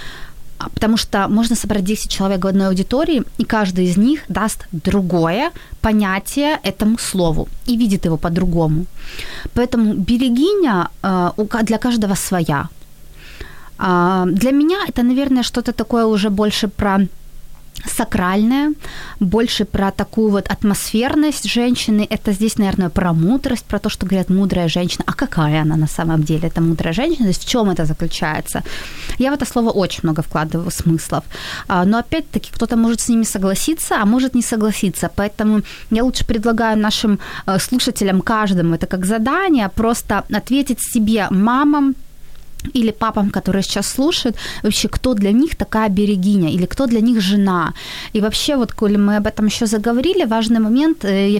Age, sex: 20-39, female